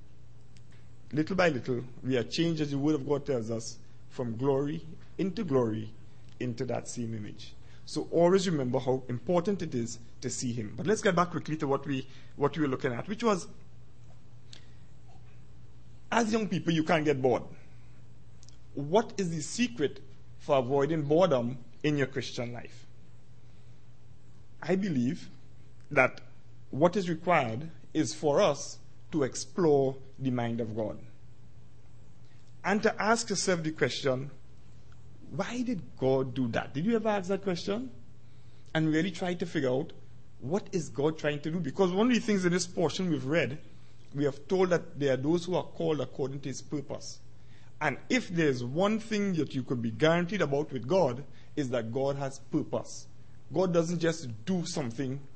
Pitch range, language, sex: 125-170 Hz, English, male